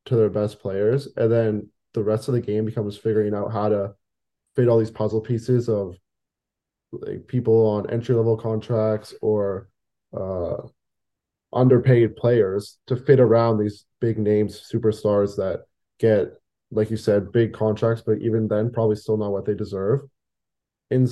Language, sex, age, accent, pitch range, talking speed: English, male, 20-39, American, 105-120 Hz, 155 wpm